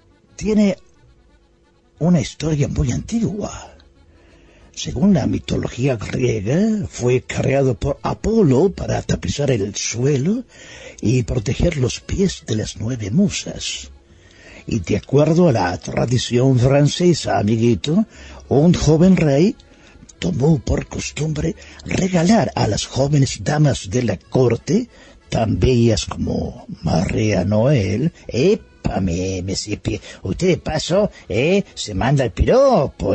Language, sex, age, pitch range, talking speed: Spanish, male, 60-79, 100-160 Hz, 115 wpm